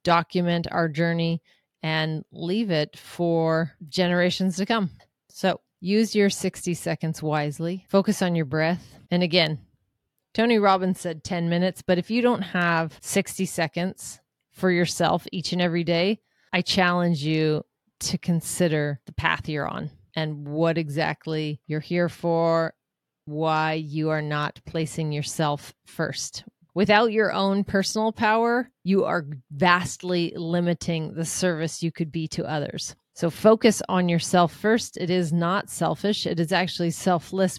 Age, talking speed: 30-49, 145 wpm